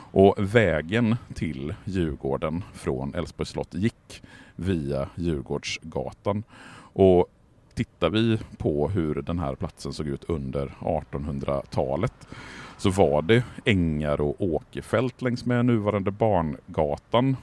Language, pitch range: Swedish, 75-105 Hz